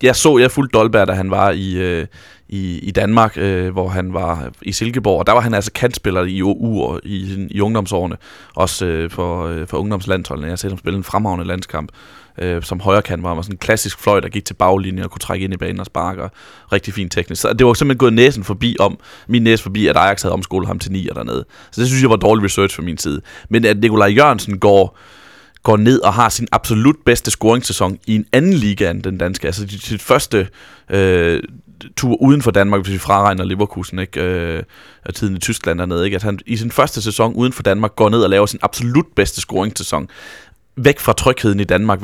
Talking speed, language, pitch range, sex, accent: 225 wpm, Danish, 95-115 Hz, male, native